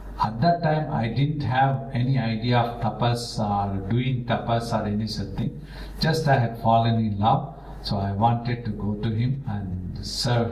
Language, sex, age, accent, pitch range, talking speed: English, male, 60-79, Indian, 110-125 Hz, 185 wpm